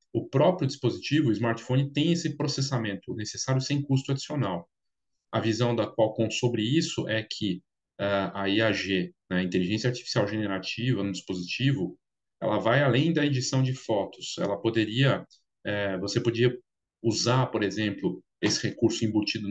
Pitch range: 110-145 Hz